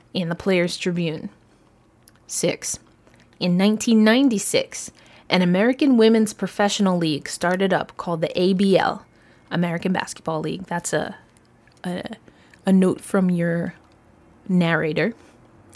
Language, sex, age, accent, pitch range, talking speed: English, female, 20-39, American, 180-245 Hz, 105 wpm